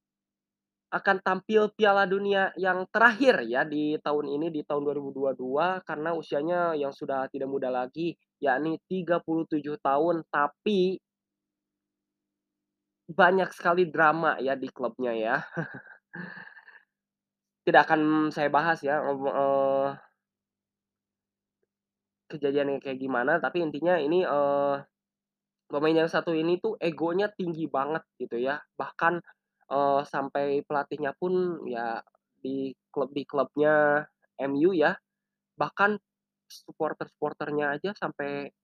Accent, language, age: native, Indonesian, 20-39